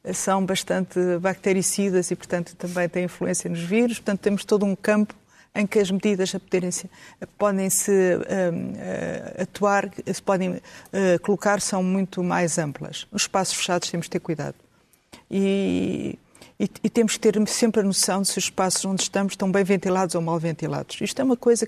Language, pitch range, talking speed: Portuguese, 185-210 Hz, 190 wpm